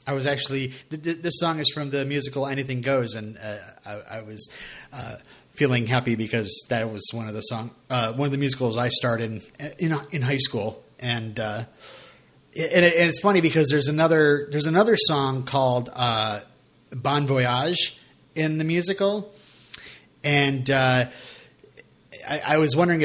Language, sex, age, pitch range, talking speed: English, male, 30-49, 125-160 Hz, 165 wpm